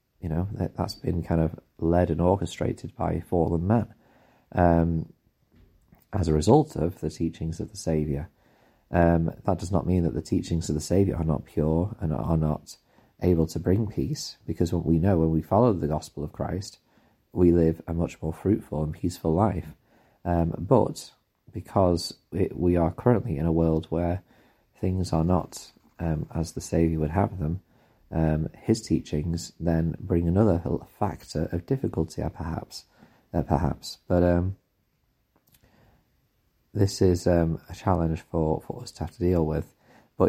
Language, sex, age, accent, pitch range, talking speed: English, male, 30-49, British, 80-95 Hz, 165 wpm